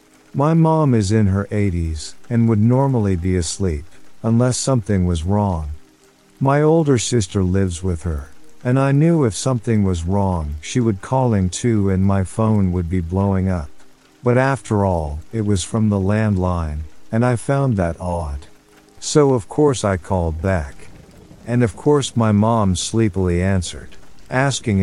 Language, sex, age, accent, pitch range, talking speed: English, male, 50-69, American, 90-120 Hz, 160 wpm